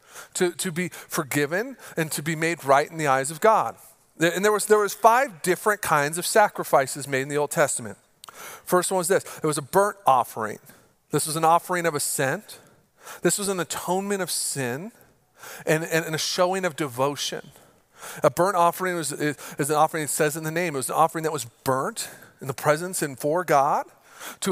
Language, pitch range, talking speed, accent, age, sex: English, 150-180 Hz, 205 wpm, American, 40-59, male